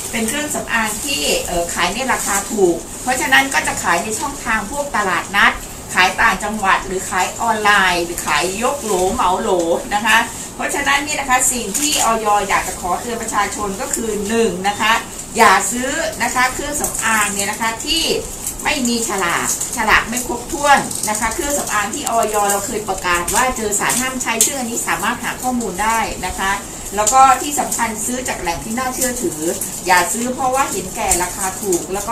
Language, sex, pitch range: Thai, female, 195-255 Hz